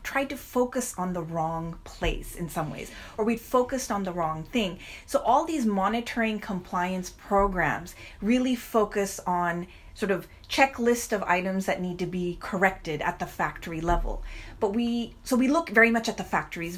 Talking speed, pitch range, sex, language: 180 wpm, 170-225 Hz, female, English